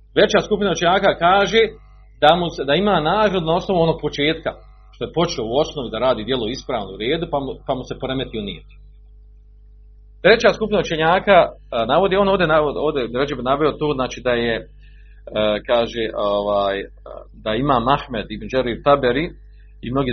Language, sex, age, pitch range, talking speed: Croatian, male, 40-59, 105-155 Hz, 165 wpm